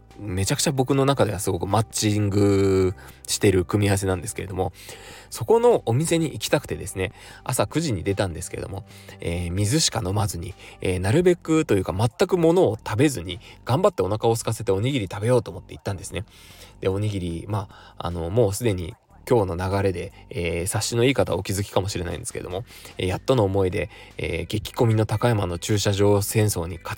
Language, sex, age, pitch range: Japanese, male, 20-39, 90-115 Hz